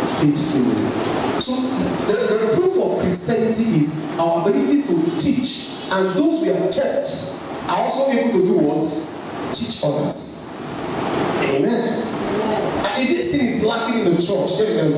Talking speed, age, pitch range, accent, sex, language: 155 wpm, 40-59, 185-275 Hz, Nigerian, male, English